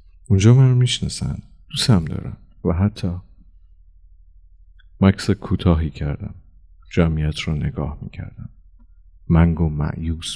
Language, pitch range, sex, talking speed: Persian, 75-100 Hz, male, 105 wpm